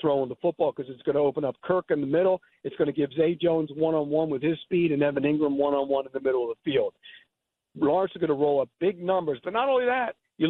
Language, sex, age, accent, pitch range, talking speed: English, male, 50-69, American, 150-195 Hz, 265 wpm